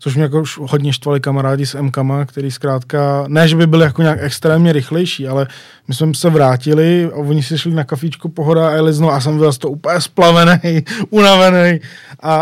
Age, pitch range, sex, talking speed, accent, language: 20-39, 140-160 Hz, male, 210 wpm, native, Czech